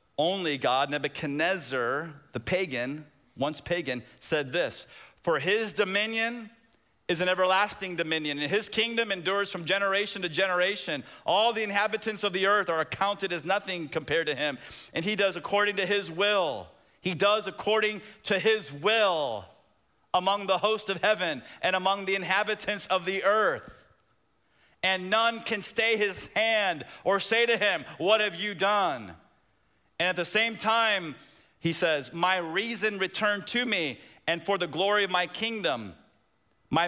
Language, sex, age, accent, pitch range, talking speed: English, male, 40-59, American, 170-215 Hz, 155 wpm